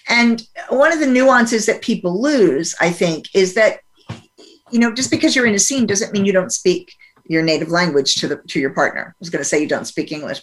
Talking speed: 240 wpm